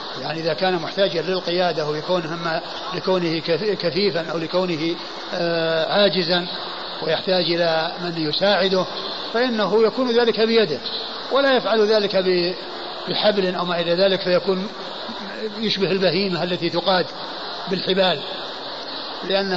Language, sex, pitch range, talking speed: Arabic, male, 170-195 Hz, 105 wpm